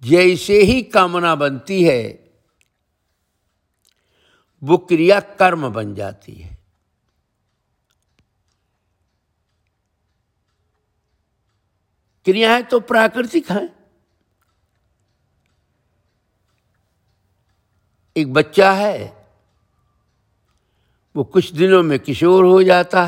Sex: male